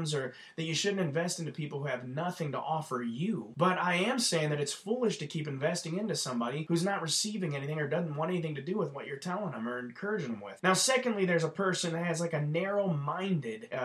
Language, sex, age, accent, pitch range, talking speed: English, male, 20-39, American, 150-200 Hz, 235 wpm